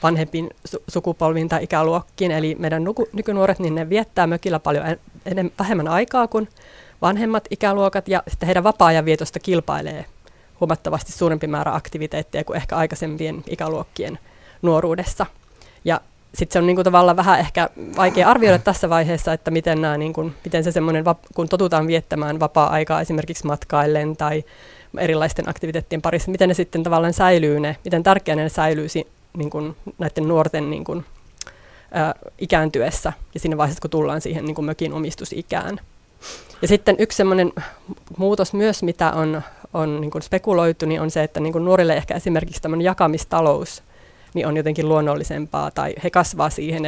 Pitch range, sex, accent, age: 155-180 Hz, female, native, 20-39